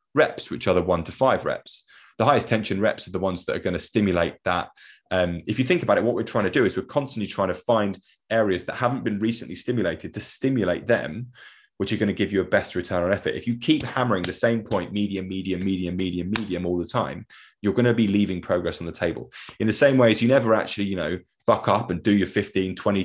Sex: male